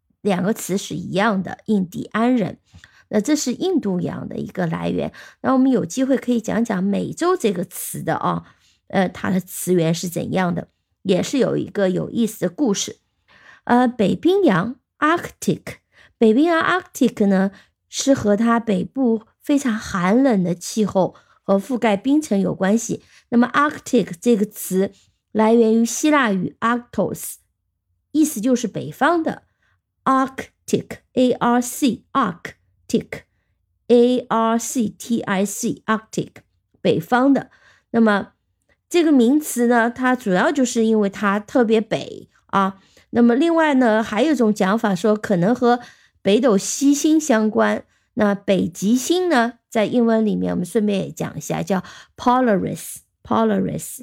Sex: female